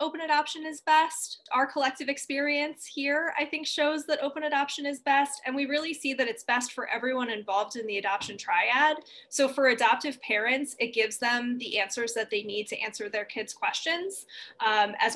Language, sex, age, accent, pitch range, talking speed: English, female, 20-39, American, 220-290 Hz, 195 wpm